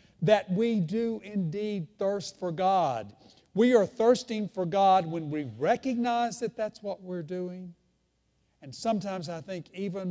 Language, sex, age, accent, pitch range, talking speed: English, male, 60-79, American, 145-215 Hz, 150 wpm